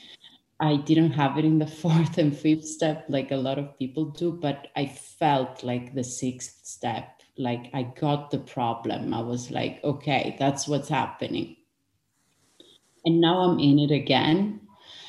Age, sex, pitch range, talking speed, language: 30-49, female, 135-165 Hz, 165 wpm, English